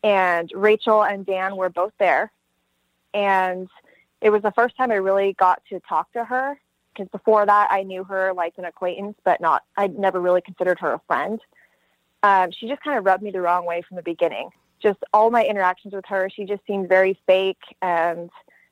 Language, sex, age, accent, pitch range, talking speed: English, female, 20-39, American, 180-210 Hz, 200 wpm